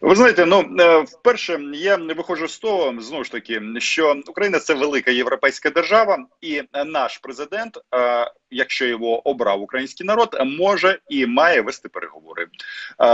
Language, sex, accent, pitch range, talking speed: Russian, male, native, 130-195 Hz, 140 wpm